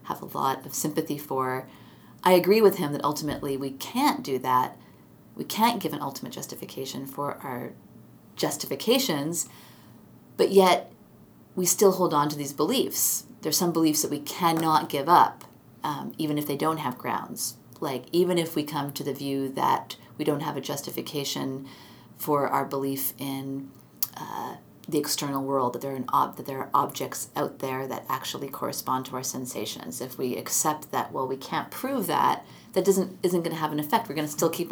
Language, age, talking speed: English, 30-49, 185 wpm